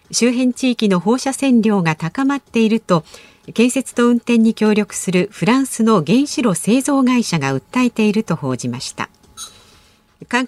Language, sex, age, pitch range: Japanese, female, 50-69, 175-250 Hz